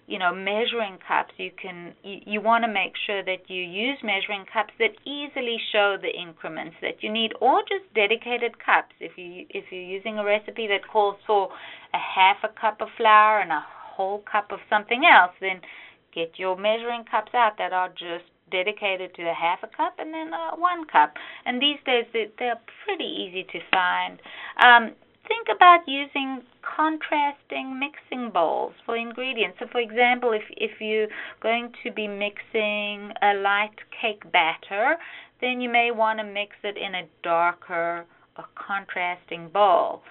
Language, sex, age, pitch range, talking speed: English, female, 30-49, 185-240 Hz, 175 wpm